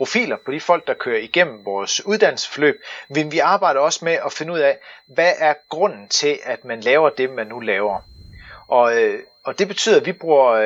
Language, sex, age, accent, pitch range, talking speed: Danish, male, 30-49, native, 150-225 Hz, 205 wpm